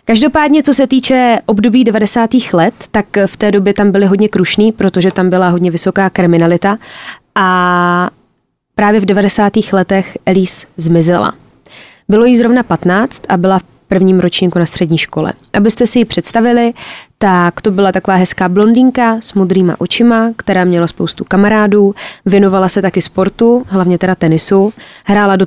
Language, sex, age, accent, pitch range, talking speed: Czech, female, 20-39, native, 175-210 Hz, 155 wpm